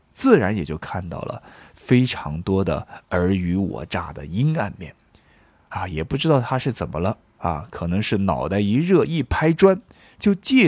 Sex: male